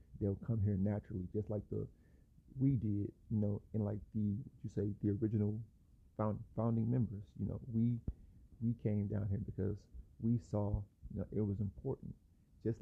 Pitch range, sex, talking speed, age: 95-110 Hz, male, 175 wpm, 30-49